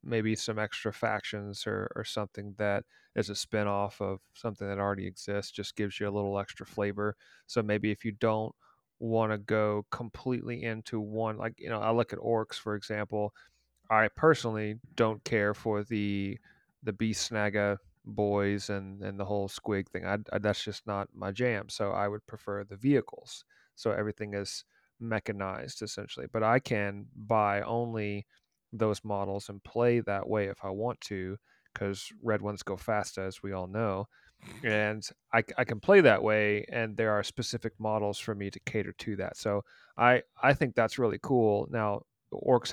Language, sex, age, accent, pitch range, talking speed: English, male, 30-49, American, 100-115 Hz, 180 wpm